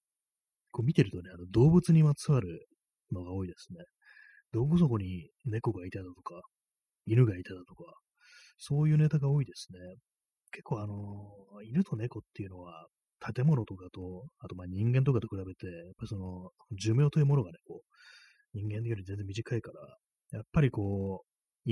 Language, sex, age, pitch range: Japanese, male, 30-49, 95-125 Hz